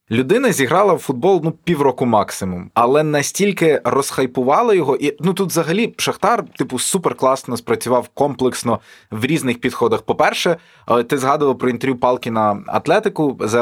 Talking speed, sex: 135 wpm, male